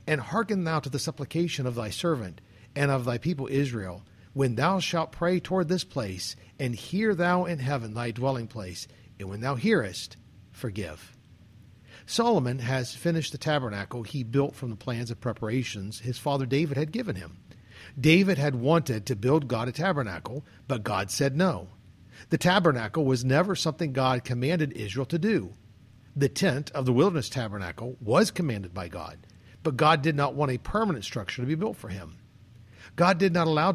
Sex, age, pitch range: male, 50-69, 110-160 Hz